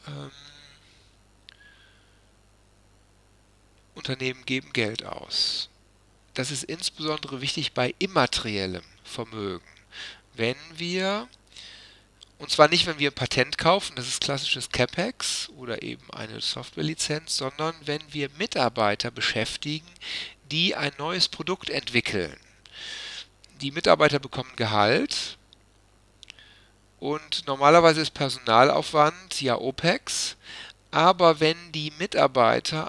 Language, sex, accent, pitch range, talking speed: German, male, German, 110-160 Hz, 95 wpm